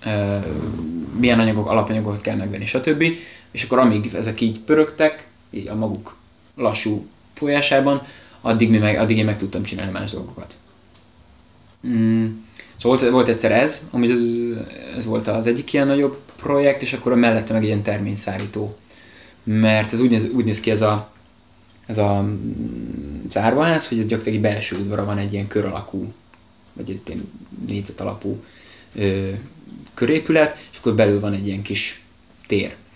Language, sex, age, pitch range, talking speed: Hungarian, male, 20-39, 100-120 Hz, 155 wpm